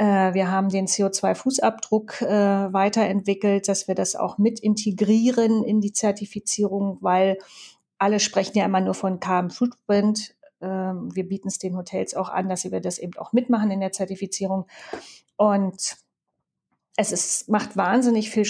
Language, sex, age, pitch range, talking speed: German, female, 30-49, 195-220 Hz, 145 wpm